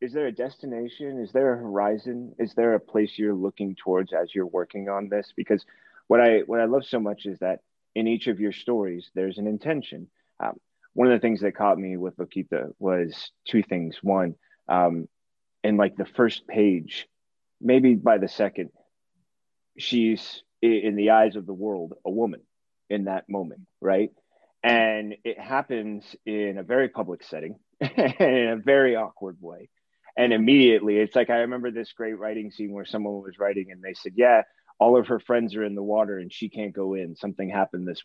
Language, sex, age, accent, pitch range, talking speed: English, male, 30-49, American, 100-120 Hz, 195 wpm